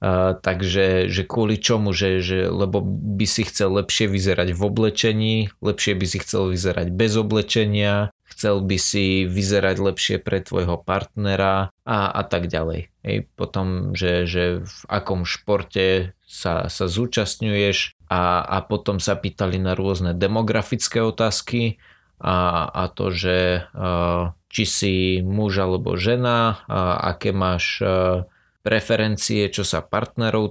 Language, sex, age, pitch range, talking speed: Slovak, male, 20-39, 90-110 Hz, 135 wpm